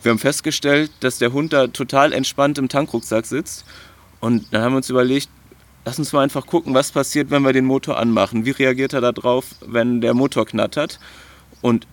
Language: German